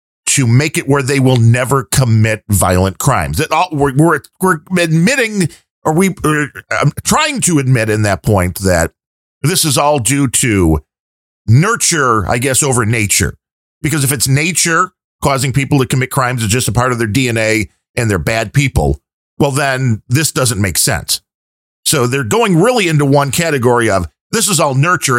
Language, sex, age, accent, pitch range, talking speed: English, male, 50-69, American, 105-150 Hz, 170 wpm